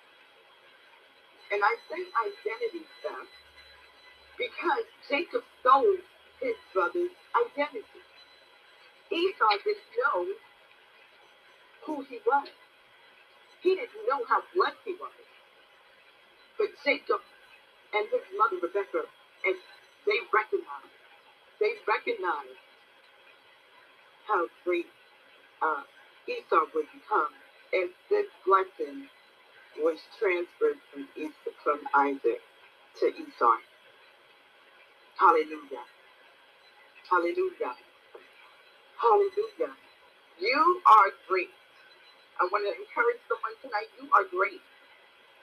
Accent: American